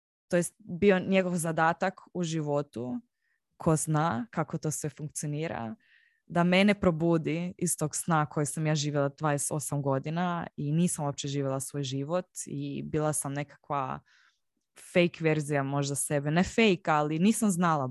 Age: 20-39